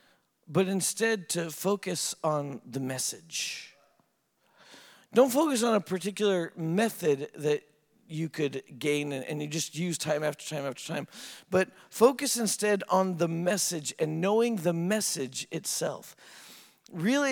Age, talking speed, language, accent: 40-59, 130 wpm, English, American